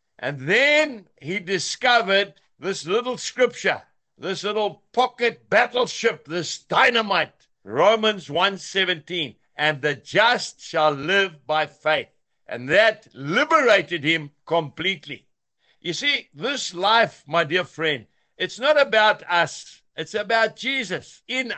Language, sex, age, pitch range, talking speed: English, male, 60-79, 170-225 Hz, 115 wpm